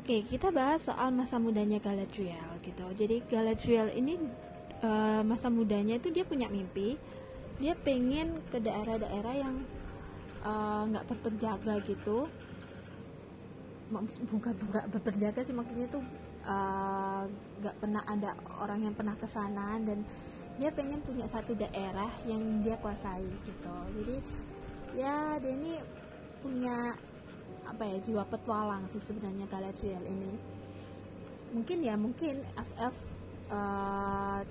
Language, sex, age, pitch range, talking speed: Indonesian, female, 20-39, 200-230 Hz, 130 wpm